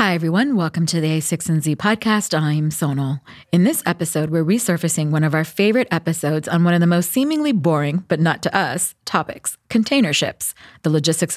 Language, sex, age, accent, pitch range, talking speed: English, female, 30-49, American, 130-170 Hz, 195 wpm